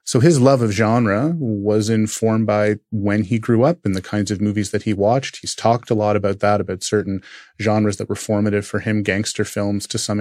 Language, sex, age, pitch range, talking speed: English, male, 30-49, 100-115 Hz, 225 wpm